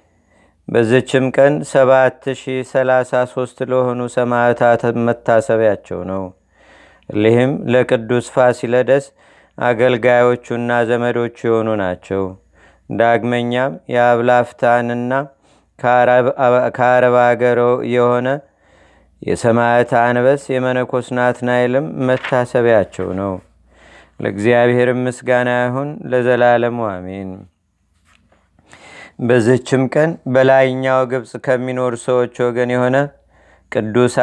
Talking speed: 70 wpm